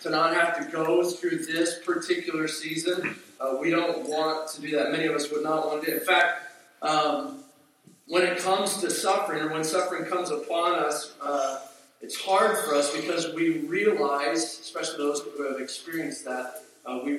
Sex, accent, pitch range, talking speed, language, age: male, American, 145-185 Hz, 190 wpm, English, 40-59